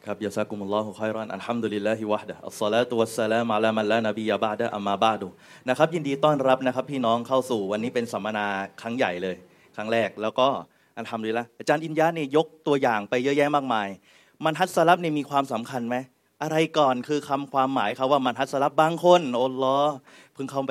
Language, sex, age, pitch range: Thai, male, 20-39, 115-150 Hz